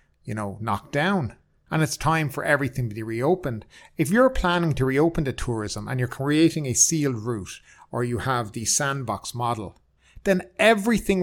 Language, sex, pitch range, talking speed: English, male, 115-145 Hz, 175 wpm